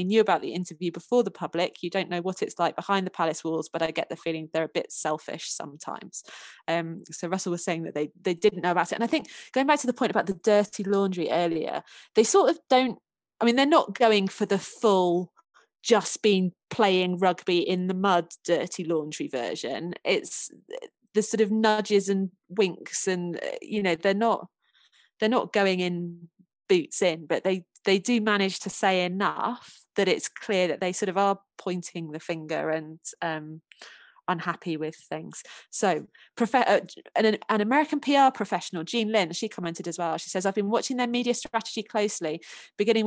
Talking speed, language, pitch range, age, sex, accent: 190 wpm, English, 170-215 Hz, 20-39, female, British